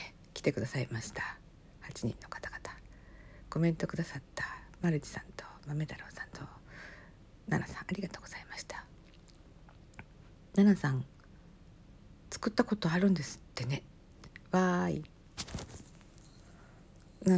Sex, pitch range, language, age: female, 145-185 Hz, Japanese, 50-69